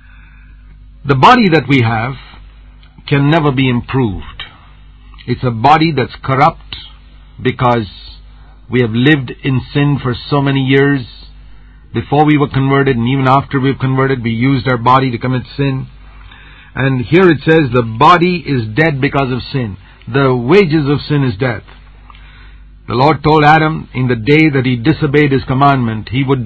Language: English